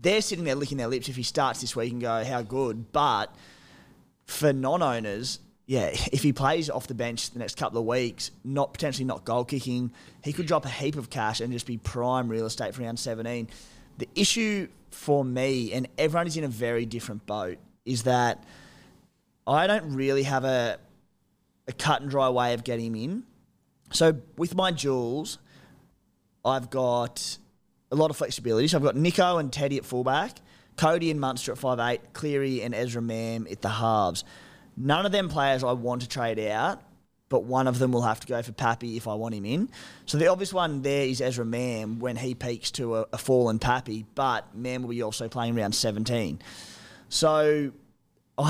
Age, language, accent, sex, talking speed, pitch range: 20-39, English, Australian, male, 190 wpm, 115-140 Hz